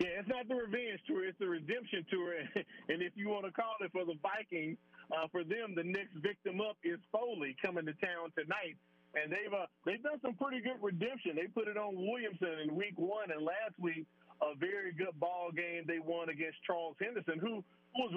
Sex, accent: male, American